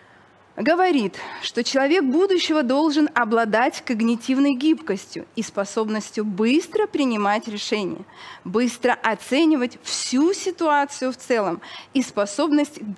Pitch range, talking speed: 220-295 Hz, 95 wpm